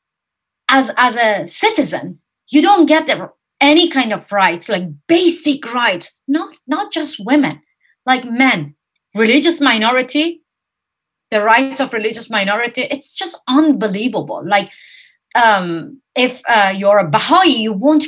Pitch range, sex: 200-285 Hz, female